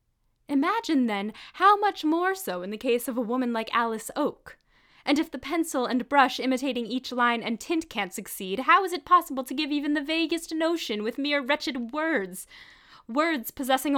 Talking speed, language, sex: 190 wpm, English, female